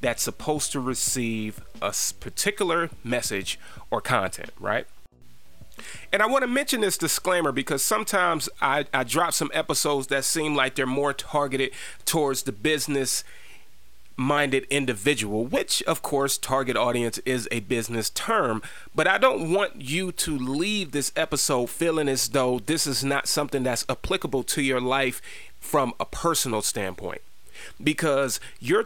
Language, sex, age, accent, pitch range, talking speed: English, male, 30-49, American, 110-145 Hz, 145 wpm